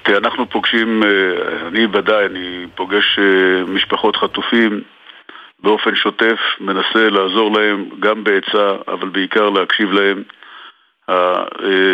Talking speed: 95 wpm